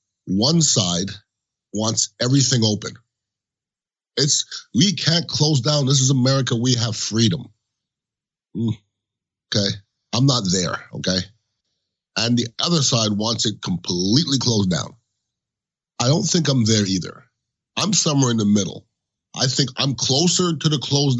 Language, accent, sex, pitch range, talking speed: English, American, male, 100-125 Hz, 135 wpm